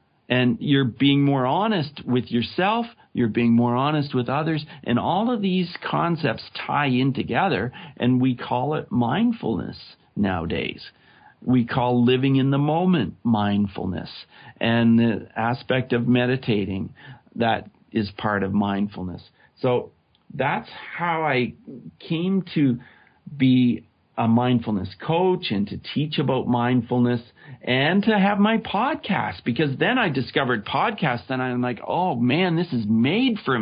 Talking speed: 140 wpm